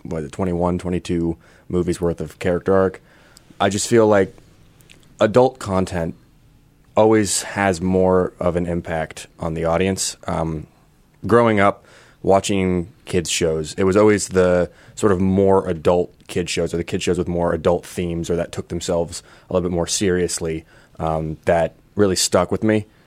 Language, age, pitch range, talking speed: English, 30-49, 85-95 Hz, 165 wpm